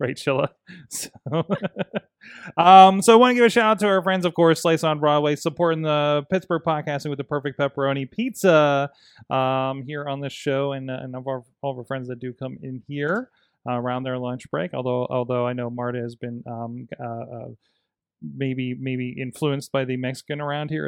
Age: 30-49